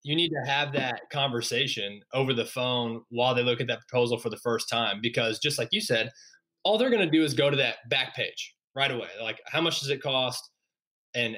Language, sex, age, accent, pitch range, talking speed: English, male, 20-39, American, 115-140 Hz, 230 wpm